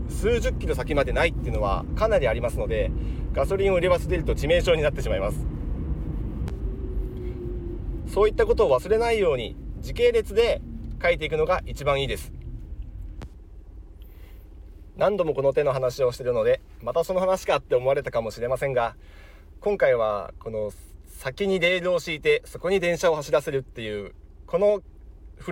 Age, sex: 40-59, male